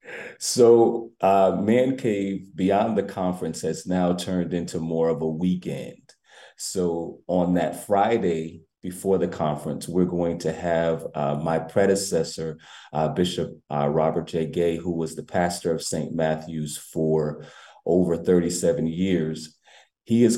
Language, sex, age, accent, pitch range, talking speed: English, male, 30-49, American, 80-90 Hz, 140 wpm